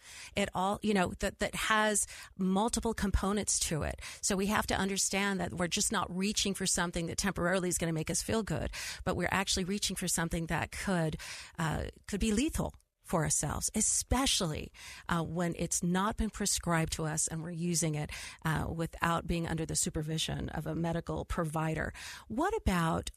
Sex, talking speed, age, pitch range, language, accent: female, 185 wpm, 40-59, 165-200 Hz, English, American